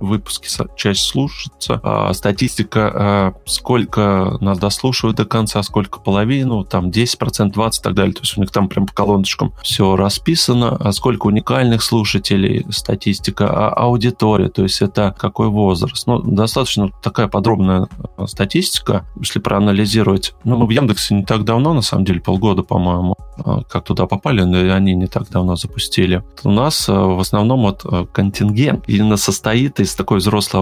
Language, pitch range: Russian, 95-115 Hz